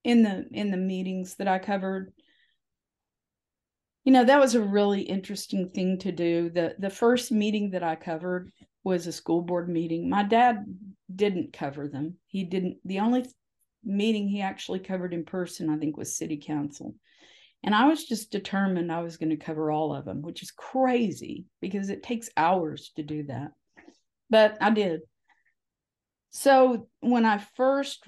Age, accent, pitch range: 50-69, American, 170-215 Hz